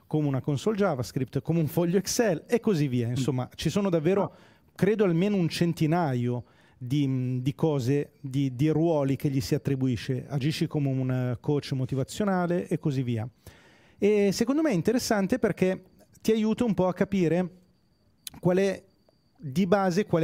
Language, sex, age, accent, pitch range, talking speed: Italian, male, 40-59, native, 140-185 Hz, 160 wpm